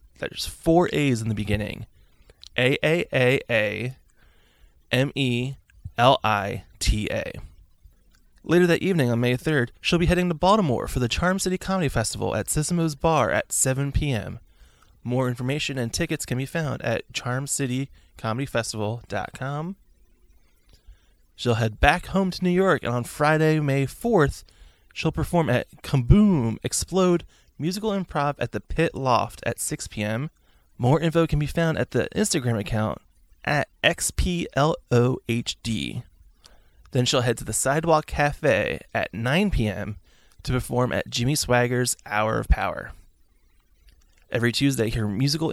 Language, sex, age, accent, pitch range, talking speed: English, male, 20-39, American, 105-150 Hz, 135 wpm